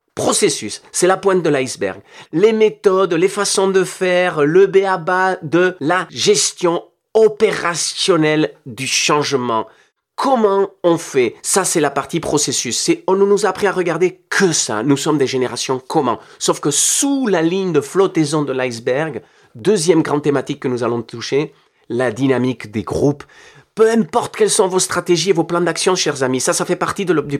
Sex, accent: male, French